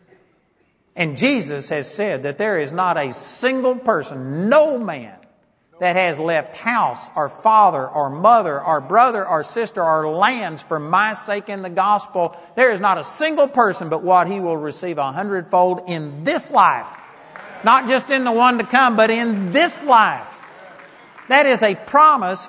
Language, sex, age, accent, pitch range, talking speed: English, male, 50-69, American, 180-260 Hz, 170 wpm